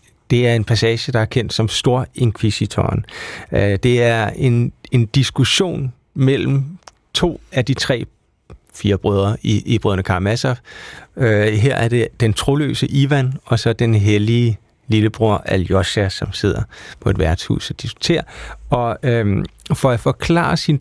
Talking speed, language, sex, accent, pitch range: 140 wpm, Danish, male, native, 110-135 Hz